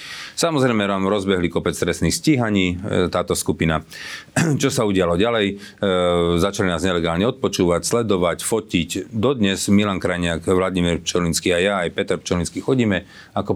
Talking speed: 135 wpm